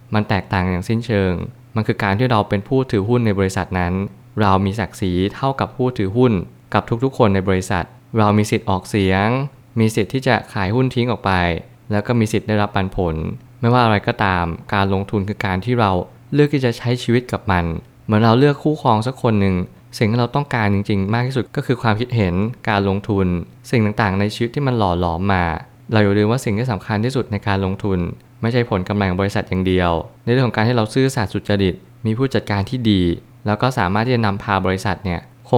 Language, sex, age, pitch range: Thai, male, 20-39, 95-120 Hz